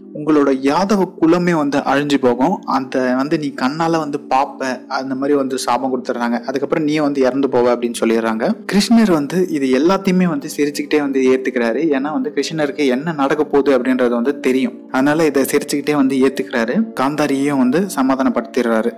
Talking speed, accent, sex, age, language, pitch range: 155 wpm, native, male, 30-49, Tamil, 135-175 Hz